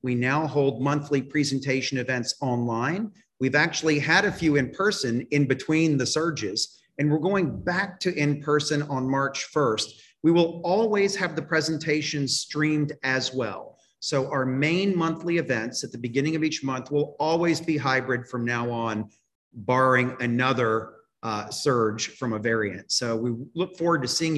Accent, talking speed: American, 165 wpm